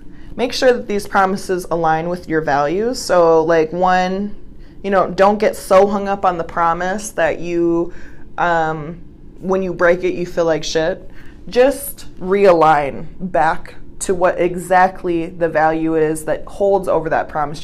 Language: English